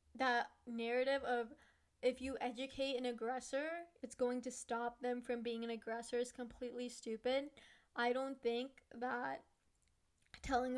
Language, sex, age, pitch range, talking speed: English, female, 10-29, 235-265 Hz, 140 wpm